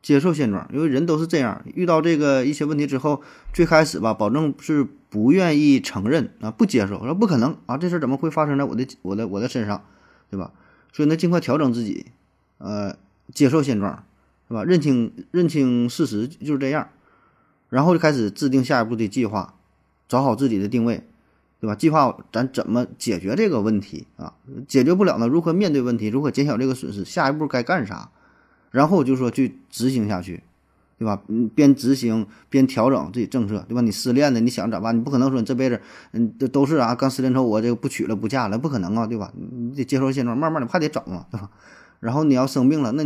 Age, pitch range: 20-39, 110-145 Hz